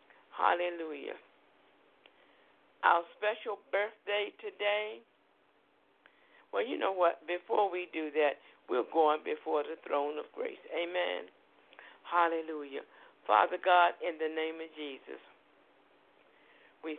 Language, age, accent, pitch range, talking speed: English, 60-79, American, 160-210 Hz, 105 wpm